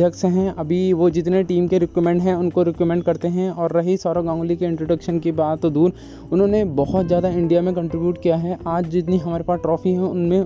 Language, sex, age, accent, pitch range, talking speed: Hindi, male, 20-39, native, 165-180 Hz, 220 wpm